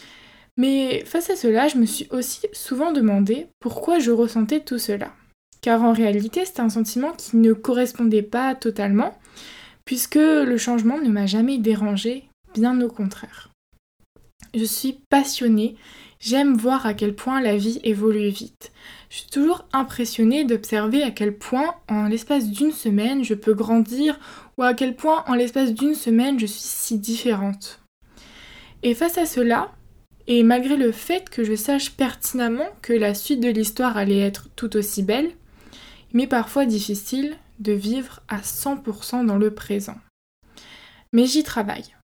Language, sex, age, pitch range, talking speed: French, female, 20-39, 220-265 Hz, 160 wpm